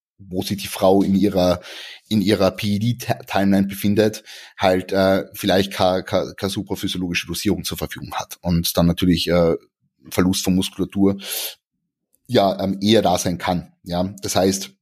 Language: German